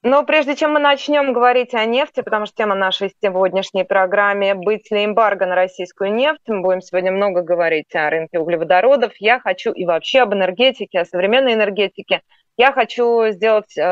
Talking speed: 175 wpm